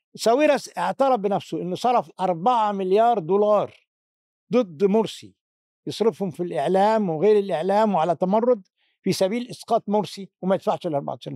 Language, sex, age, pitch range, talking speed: Arabic, male, 60-79, 180-225 Hz, 130 wpm